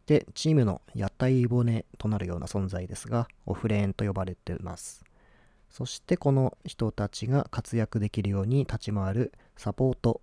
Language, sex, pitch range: Japanese, male, 100-125 Hz